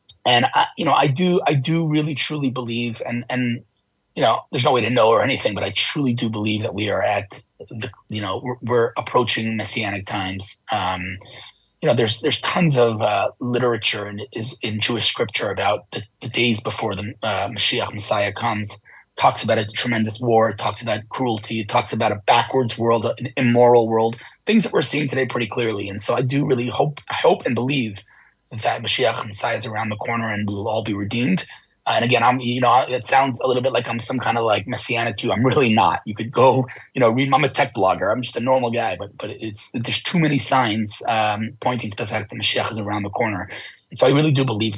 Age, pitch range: 30-49, 110-130 Hz